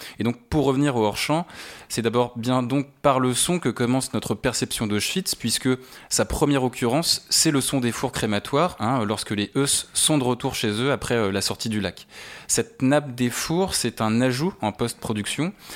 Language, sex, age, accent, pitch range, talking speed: French, male, 20-39, French, 110-140 Hz, 200 wpm